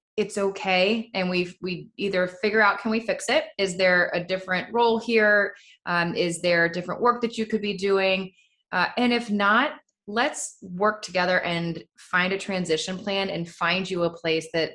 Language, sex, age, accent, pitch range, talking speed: English, female, 20-39, American, 170-210 Hz, 190 wpm